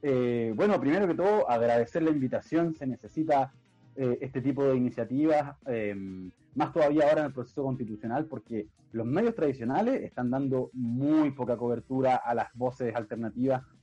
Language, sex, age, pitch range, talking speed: Spanish, male, 30-49, 120-150 Hz, 155 wpm